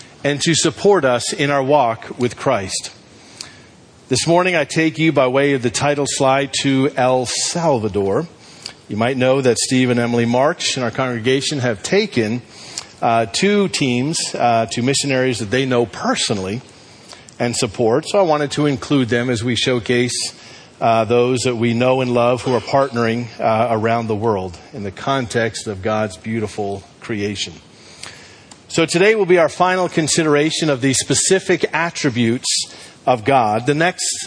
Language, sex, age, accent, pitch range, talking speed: English, male, 40-59, American, 120-150 Hz, 165 wpm